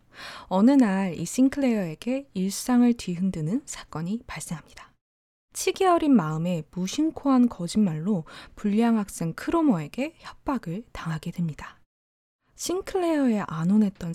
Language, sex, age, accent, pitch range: Korean, female, 20-39, native, 170-265 Hz